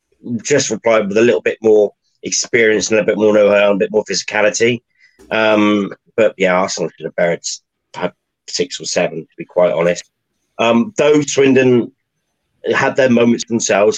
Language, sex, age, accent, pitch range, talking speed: English, male, 30-49, British, 95-115 Hz, 170 wpm